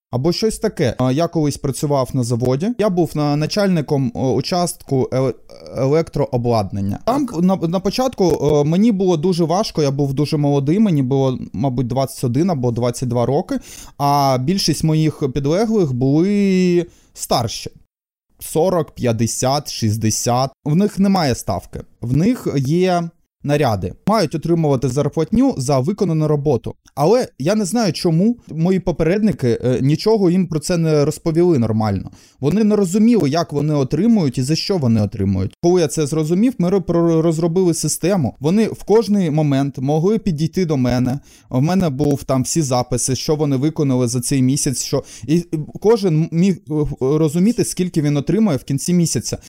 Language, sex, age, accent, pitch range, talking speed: Ukrainian, male, 20-39, native, 135-180 Hz, 145 wpm